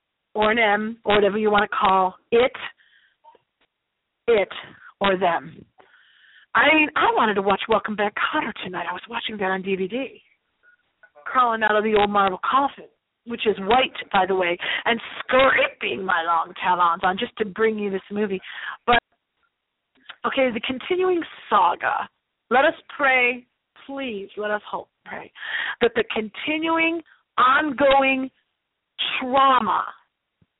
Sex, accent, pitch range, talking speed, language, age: female, American, 205-265 Hz, 140 wpm, English, 40-59